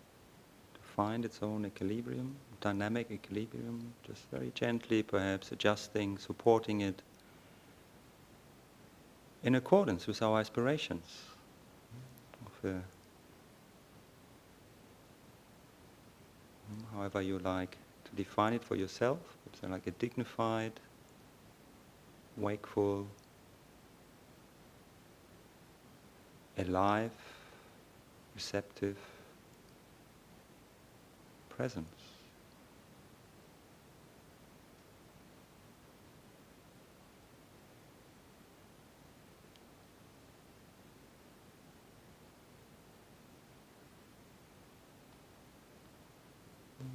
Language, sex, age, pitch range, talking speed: English, male, 50-69, 95-115 Hz, 40 wpm